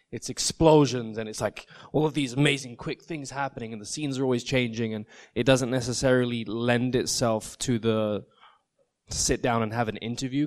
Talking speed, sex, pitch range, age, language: 190 wpm, male, 110-130 Hz, 20-39, English